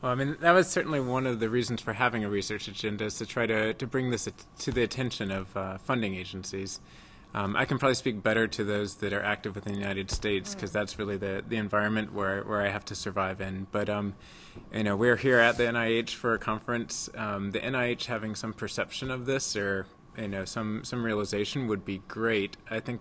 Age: 30-49